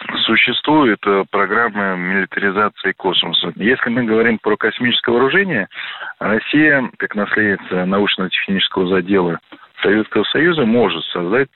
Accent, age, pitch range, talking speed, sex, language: native, 40-59, 95-115 Hz, 105 wpm, male, Russian